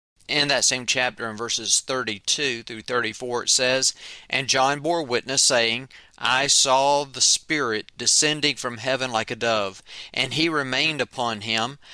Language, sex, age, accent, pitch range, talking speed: English, male, 40-59, American, 115-150 Hz, 155 wpm